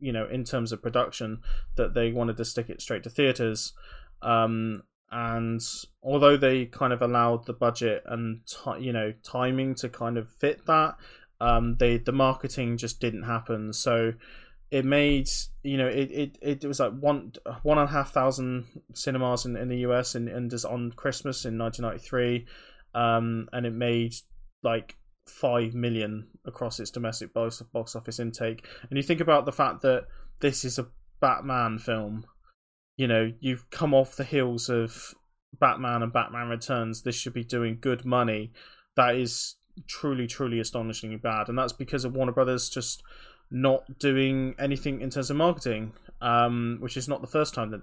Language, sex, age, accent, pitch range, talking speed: English, male, 20-39, British, 115-135 Hz, 175 wpm